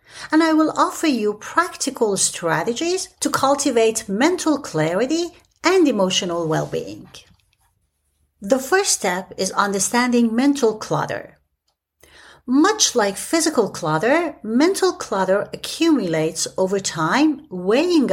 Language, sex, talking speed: English, female, 105 wpm